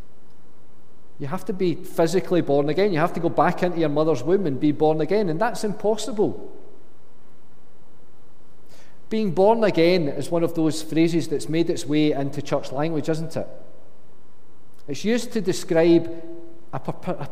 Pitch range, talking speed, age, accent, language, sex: 145-185 Hz, 155 wpm, 40-59, British, English, male